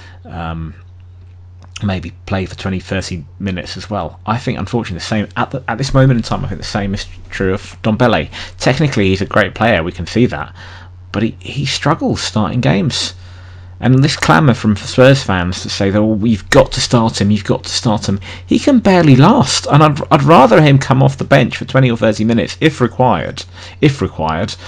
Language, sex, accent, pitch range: English, male, British, 90-115 Hz